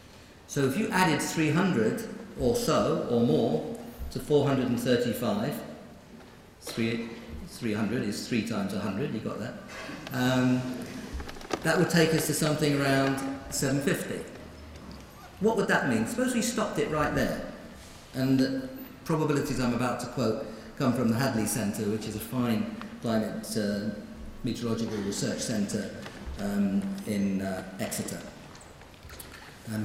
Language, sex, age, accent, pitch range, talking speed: English, male, 50-69, British, 115-155 Hz, 130 wpm